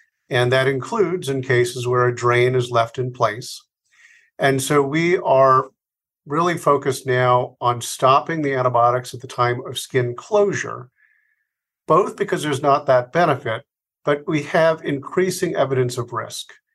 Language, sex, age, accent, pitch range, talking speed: English, male, 50-69, American, 120-145 Hz, 150 wpm